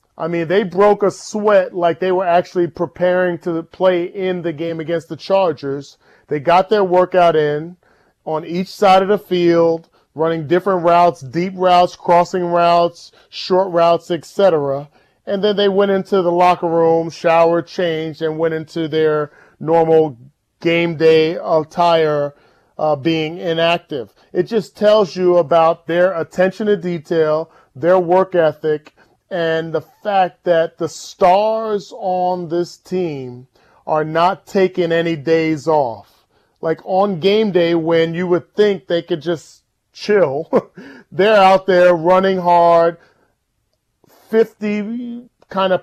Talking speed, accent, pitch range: 140 wpm, American, 165-185 Hz